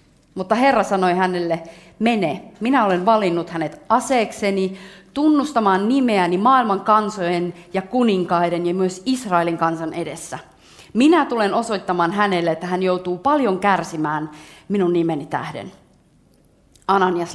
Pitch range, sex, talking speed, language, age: 170-215 Hz, female, 120 wpm, Finnish, 30-49